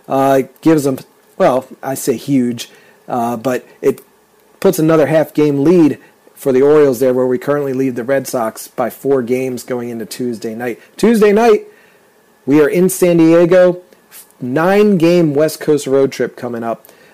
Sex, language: male, English